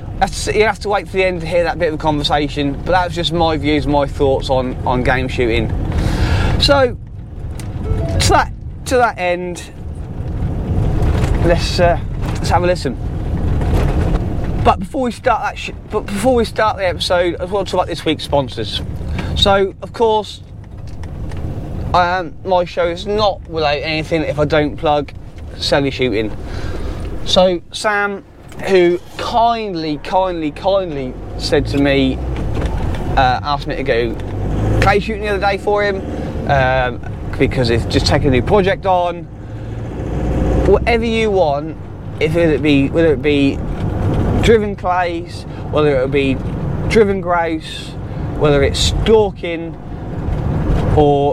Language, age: English, 20-39